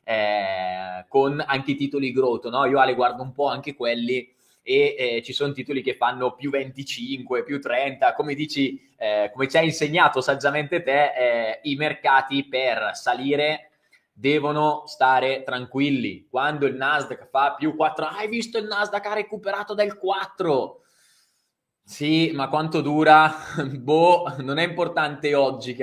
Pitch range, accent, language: 135-165 Hz, native, Italian